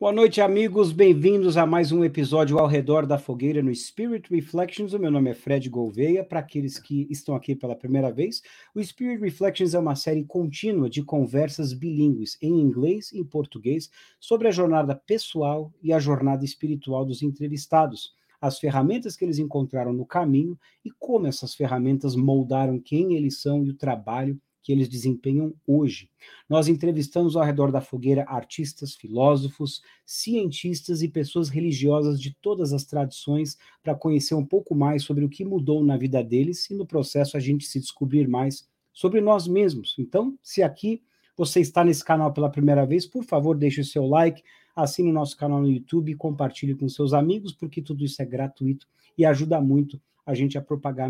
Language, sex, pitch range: English, male, 140-170 Hz